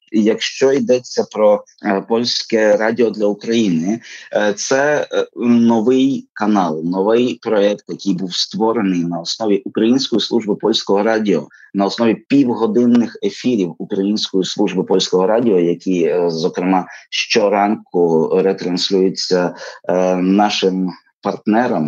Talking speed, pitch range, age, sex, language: 110 wpm, 95-115 Hz, 30-49, male, Ukrainian